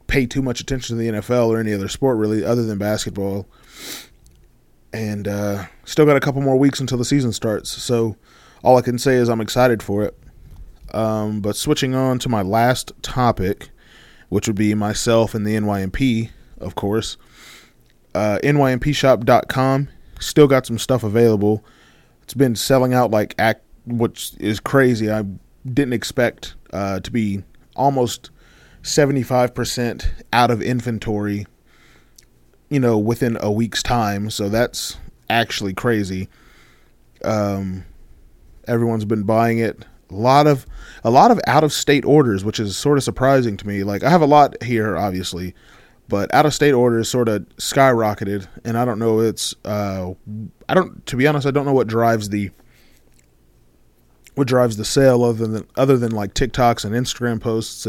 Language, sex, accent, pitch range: English, male, American, 105-125 Hz